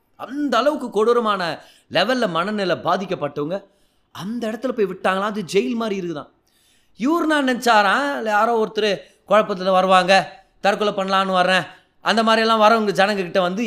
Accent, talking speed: native, 135 wpm